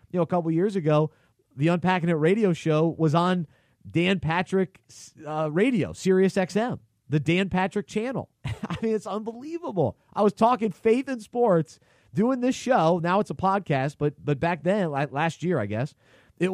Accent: American